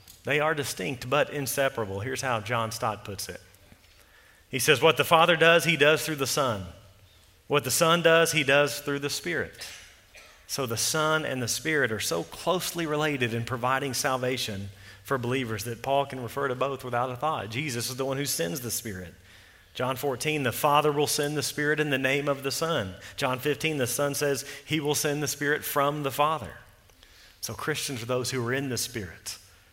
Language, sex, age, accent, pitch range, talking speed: English, male, 40-59, American, 100-145 Hz, 200 wpm